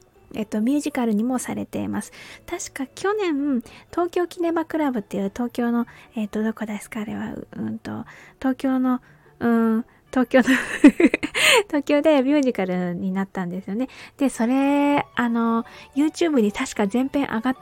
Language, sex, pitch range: Japanese, female, 205-280 Hz